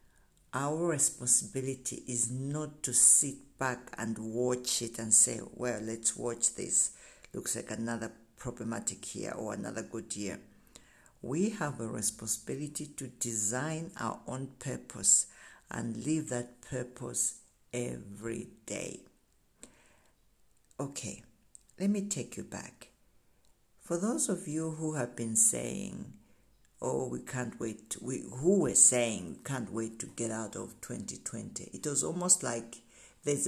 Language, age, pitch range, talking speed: English, 60-79, 115-140 Hz, 135 wpm